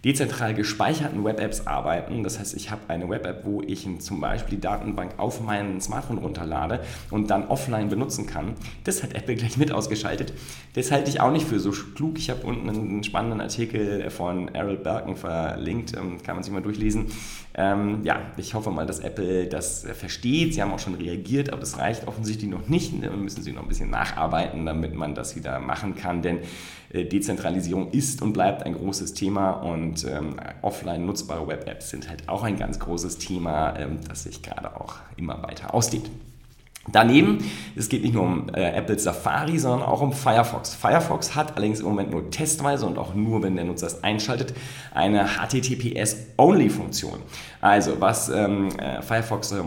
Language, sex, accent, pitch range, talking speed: German, male, German, 90-110 Hz, 185 wpm